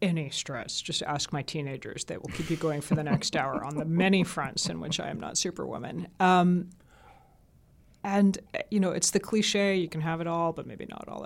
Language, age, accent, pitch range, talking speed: English, 30-49, American, 150-185 Hz, 220 wpm